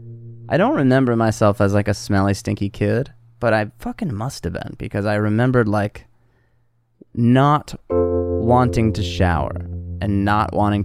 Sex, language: male, English